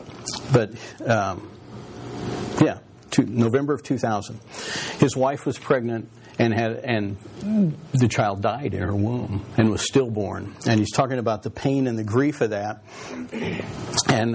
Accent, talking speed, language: American, 145 wpm, English